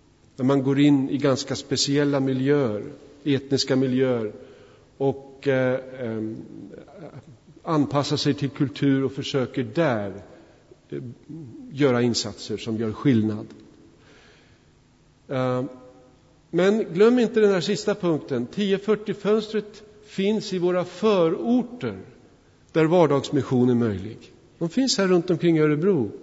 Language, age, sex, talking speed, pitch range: Swedish, 50-69, male, 110 wpm, 125-160 Hz